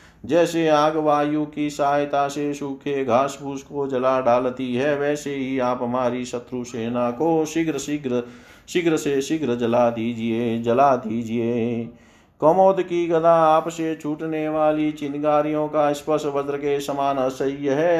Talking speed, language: 145 wpm, Hindi